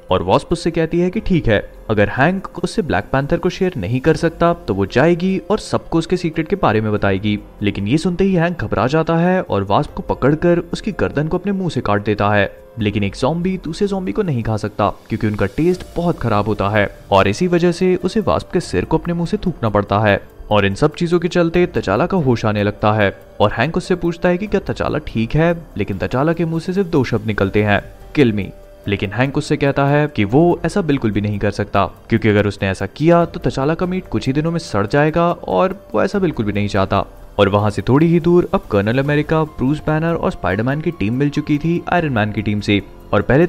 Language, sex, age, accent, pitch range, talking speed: Hindi, male, 30-49, native, 105-170 Hz, 235 wpm